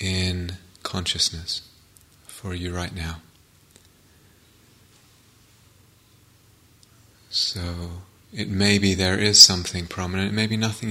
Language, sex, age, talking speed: English, male, 30-49, 90 wpm